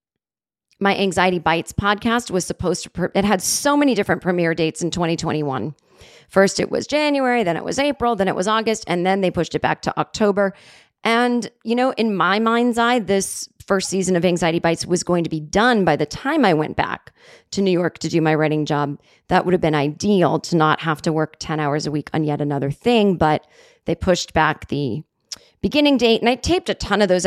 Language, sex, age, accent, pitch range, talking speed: English, female, 30-49, American, 160-220 Hz, 220 wpm